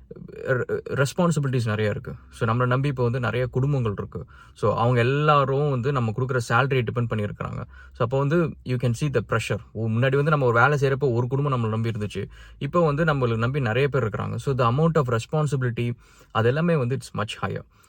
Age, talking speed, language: 20-39, 85 wpm, English